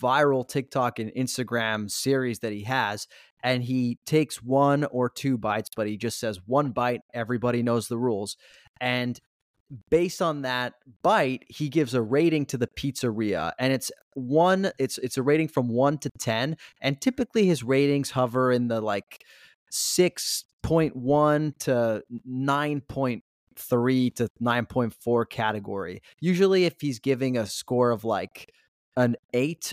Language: English